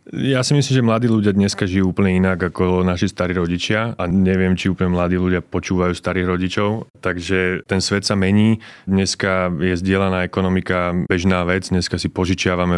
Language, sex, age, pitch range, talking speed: Slovak, male, 30-49, 90-105 Hz, 175 wpm